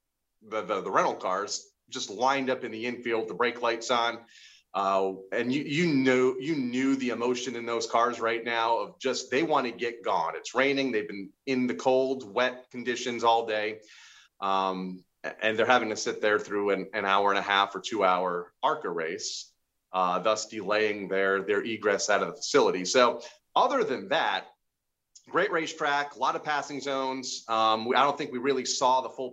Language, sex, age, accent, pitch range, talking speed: English, male, 30-49, American, 110-130 Hz, 200 wpm